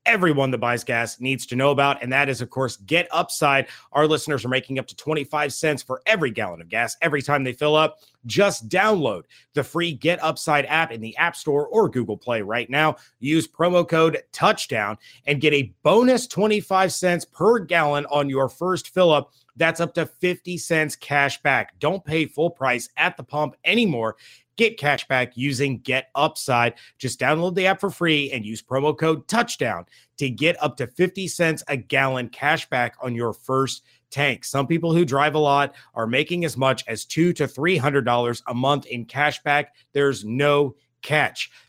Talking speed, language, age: 190 wpm, English, 30-49